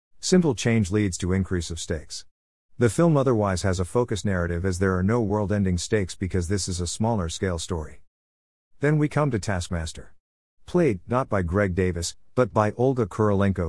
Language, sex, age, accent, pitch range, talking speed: English, male, 50-69, American, 90-110 Hz, 175 wpm